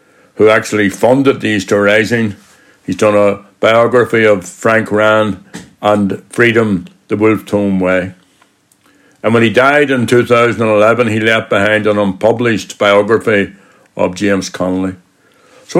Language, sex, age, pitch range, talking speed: English, male, 60-79, 105-130 Hz, 135 wpm